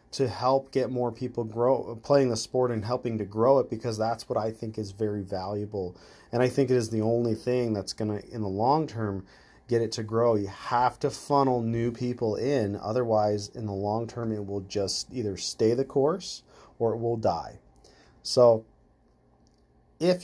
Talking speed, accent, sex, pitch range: 195 wpm, American, male, 110-135 Hz